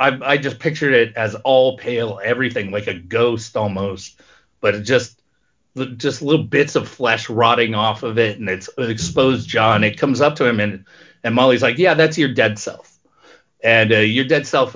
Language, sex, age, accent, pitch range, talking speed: English, male, 30-49, American, 120-155 Hz, 190 wpm